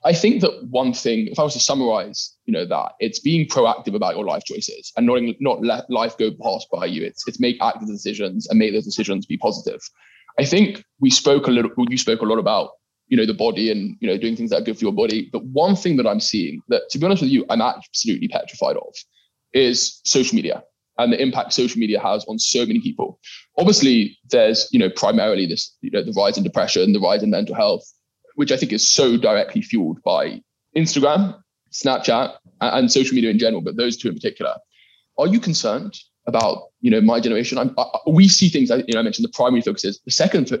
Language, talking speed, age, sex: English, 230 wpm, 20-39, male